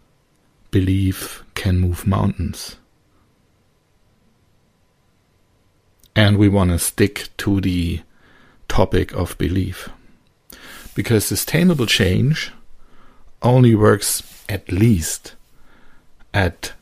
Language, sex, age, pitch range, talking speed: English, male, 60-79, 90-110 Hz, 80 wpm